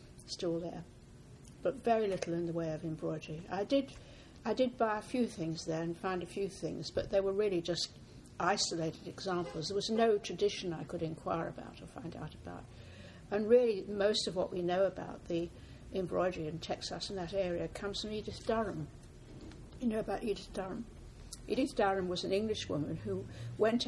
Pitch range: 170-210 Hz